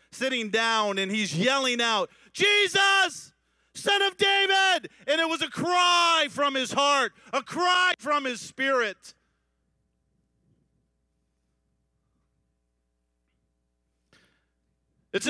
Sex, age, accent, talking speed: male, 40-59, American, 95 wpm